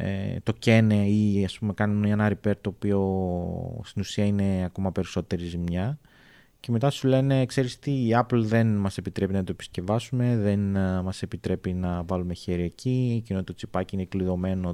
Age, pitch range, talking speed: 30-49, 95-125 Hz, 170 wpm